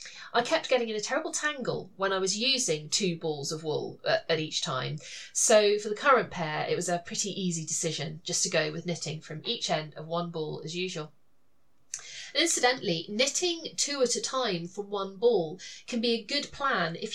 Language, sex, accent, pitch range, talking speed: English, female, British, 175-235 Hz, 200 wpm